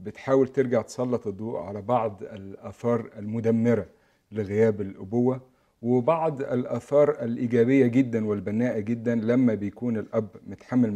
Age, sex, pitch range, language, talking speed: 50-69, male, 105-130 Hz, Arabic, 110 wpm